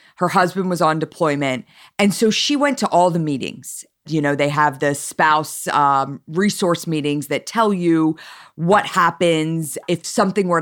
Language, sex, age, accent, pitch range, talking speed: English, female, 40-59, American, 140-175 Hz, 170 wpm